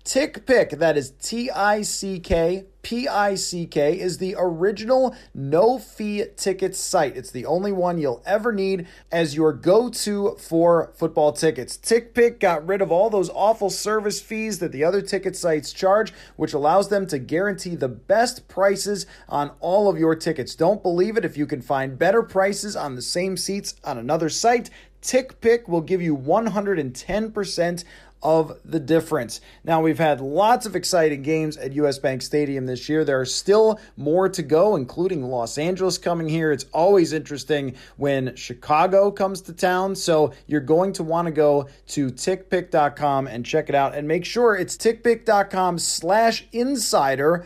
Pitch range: 150-200 Hz